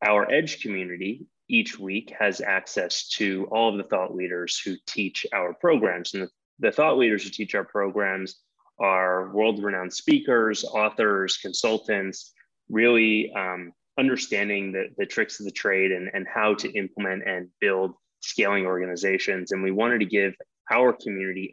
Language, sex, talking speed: English, male, 155 wpm